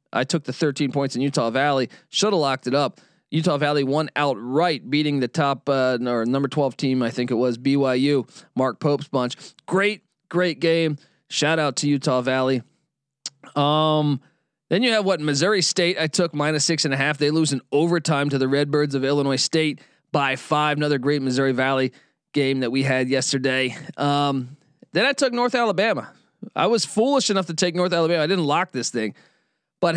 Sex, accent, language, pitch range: male, American, English, 135-160 Hz